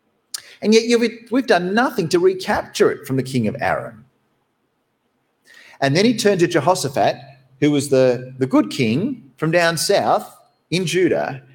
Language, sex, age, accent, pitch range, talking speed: English, male, 40-59, Australian, 140-230 Hz, 155 wpm